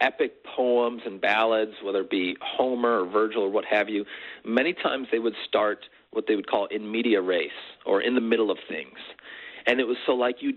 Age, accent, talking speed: 40-59, American, 215 wpm